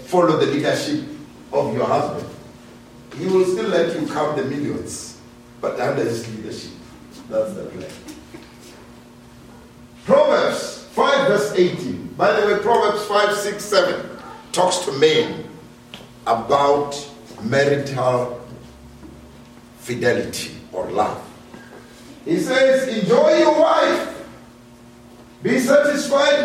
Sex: male